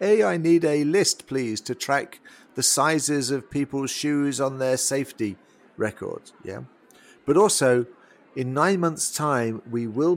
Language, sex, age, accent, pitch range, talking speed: English, male, 40-59, British, 105-125 Hz, 155 wpm